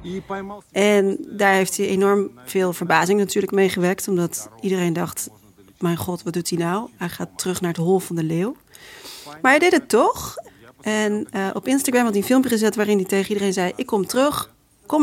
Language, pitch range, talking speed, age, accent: Dutch, 175-210 Hz, 205 wpm, 40-59, Dutch